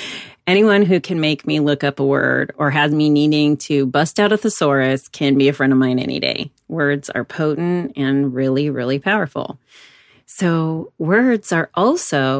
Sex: female